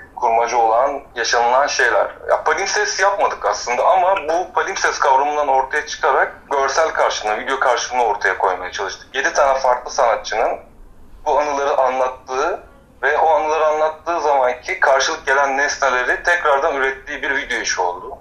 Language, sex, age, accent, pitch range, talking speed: Turkish, male, 30-49, native, 115-150 Hz, 135 wpm